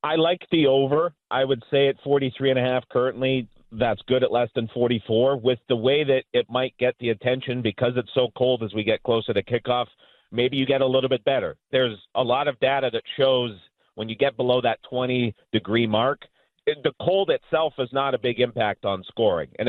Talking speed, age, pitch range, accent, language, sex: 205 wpm, 40-59, 115-135 Hz, American, English, male